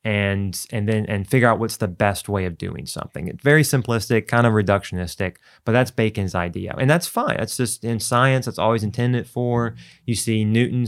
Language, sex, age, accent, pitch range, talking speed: English, male, 30-49, American, 95-125 Hz, 205 wpm